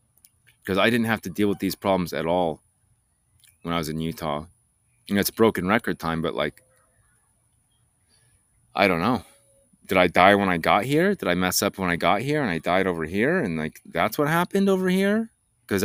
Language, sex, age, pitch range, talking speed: English, male, 30-49, 95-120 Hz, 205 wpm